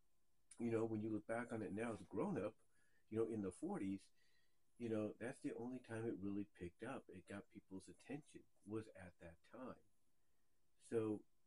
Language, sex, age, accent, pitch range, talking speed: English, male, 40-59, American, 105-125 Hz, 190 wpm